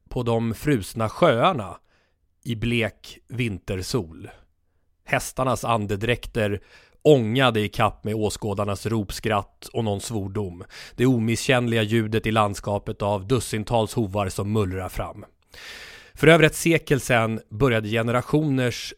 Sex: male